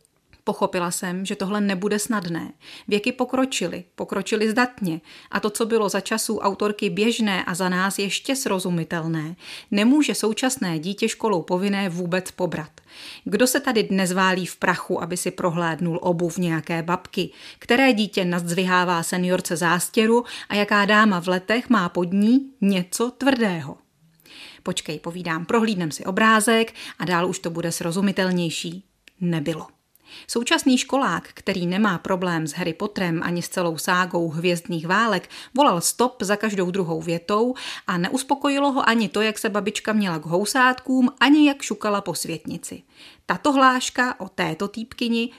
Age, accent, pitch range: 30-49, native, 180-240 Hz